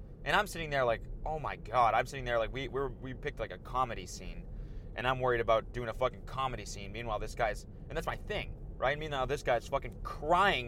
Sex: male